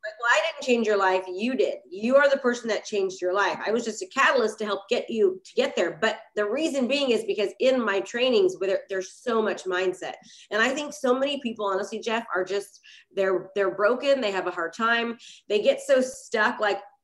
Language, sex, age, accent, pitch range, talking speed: English, female, 30-49, American, 200-265 Hz, 230 wpm